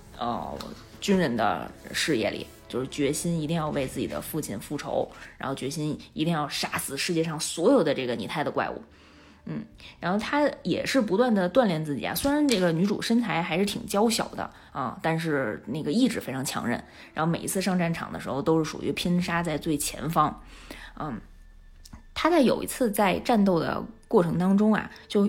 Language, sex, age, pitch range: Chinese, female, 20-39, 160-225 Hz